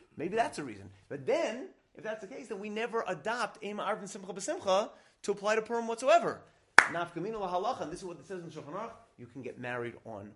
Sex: male